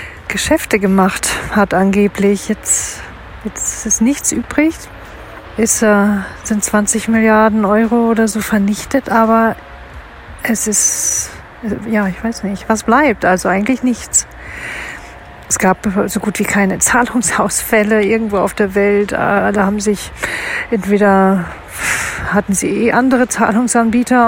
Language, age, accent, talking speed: German, 40-59, German, 130 wpm